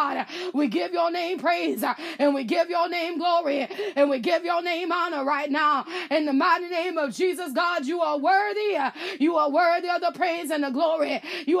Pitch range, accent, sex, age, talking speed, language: 290-350 Hz, American, female, 20-39, 200 wpm, English